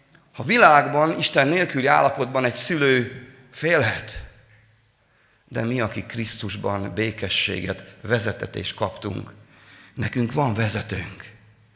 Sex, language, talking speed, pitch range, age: male, Hungarian, 90 wpm, 105-145 Hz, 30-49